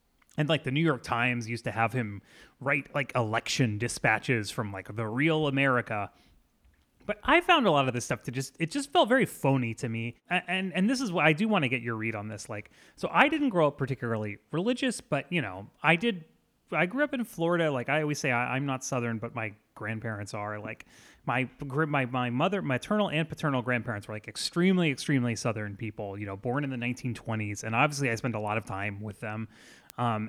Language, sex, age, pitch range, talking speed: English, male, 30-49, 115-155 Hz, 225 wpm